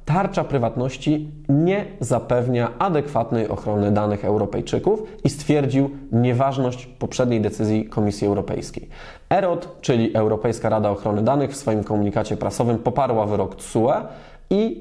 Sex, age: male, 20-39